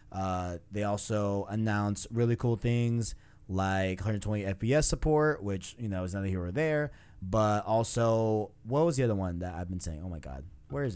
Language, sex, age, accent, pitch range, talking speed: English, male, 20-39, American, 100-130 Hz, 190 wpm